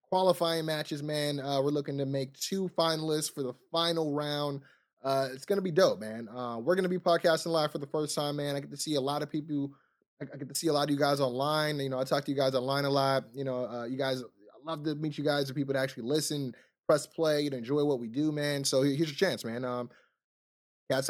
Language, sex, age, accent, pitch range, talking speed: English, male, 20-39, American, 135-165 Hz, 255 wpm